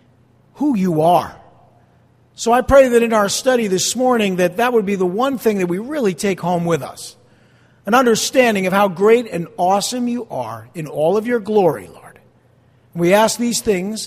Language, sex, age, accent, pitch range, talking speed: English, male, 50-69, American, 175-245 Hz, 190 wpm